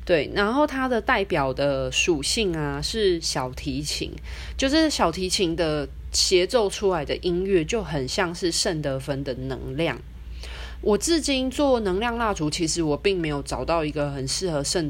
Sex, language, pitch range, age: female, Chinese, 140-205 Hz, 20-39